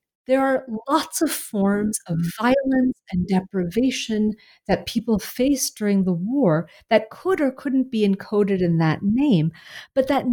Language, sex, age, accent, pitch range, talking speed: English, female, 40-59, American, 185-255 Hz, 150 wpm